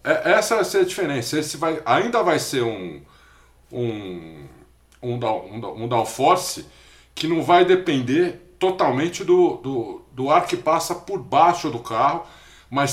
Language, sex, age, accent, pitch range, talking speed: Portuguese, male, 50-69, Brazilian, 120-185 Hz, 150 wpm